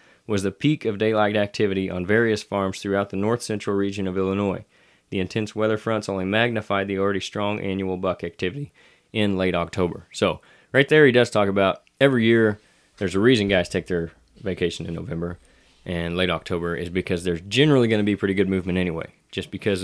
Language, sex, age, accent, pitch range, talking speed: English, male, 20-39, American, 90-110 Hz, 195 wpm